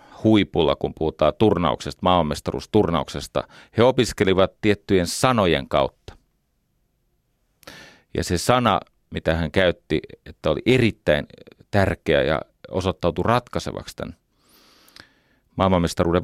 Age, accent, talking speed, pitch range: 40-59, native, 90 wpm, 80-105 Hz